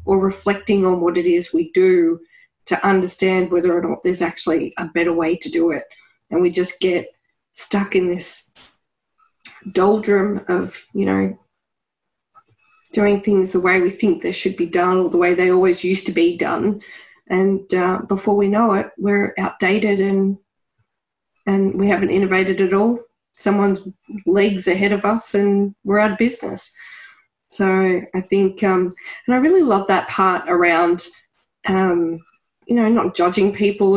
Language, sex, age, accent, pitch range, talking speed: English, female, 20-39, Australian, 180-215 Hz, 165 wpm